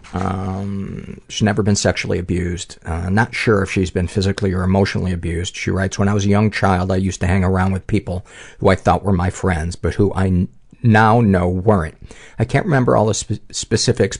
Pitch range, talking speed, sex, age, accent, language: 90-105 Hz, 210 wpm, male, 50-69, American, English